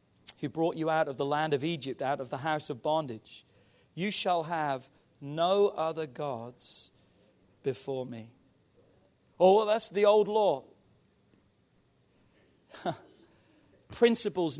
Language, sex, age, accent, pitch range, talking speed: English, male, 40-59, British, 140-195 Hz, 120 wpm